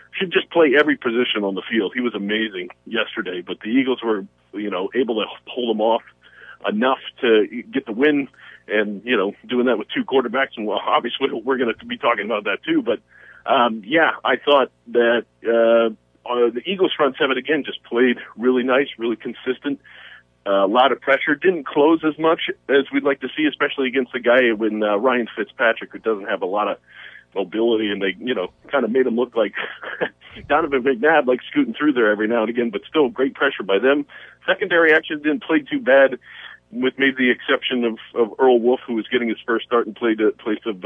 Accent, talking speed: American, 215 wpm